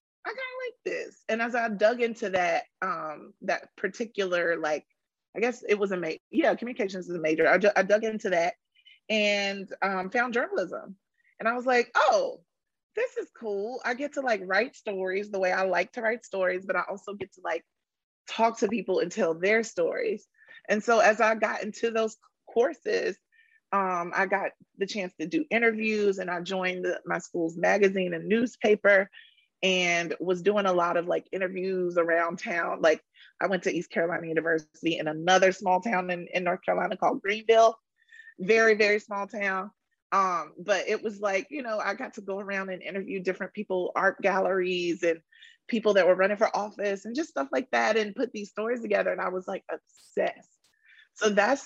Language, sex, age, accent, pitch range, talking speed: English, female, 30-49, American, 185-225 Hz, 195 wpm